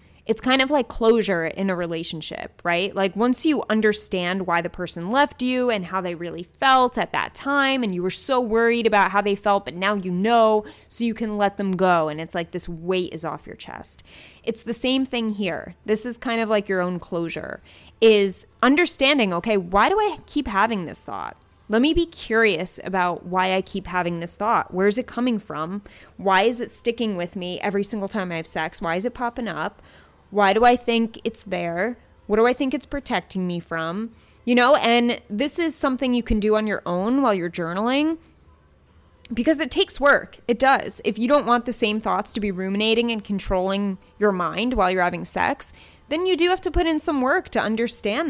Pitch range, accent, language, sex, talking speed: 185-245 Hz, American, English, female, 215 wpm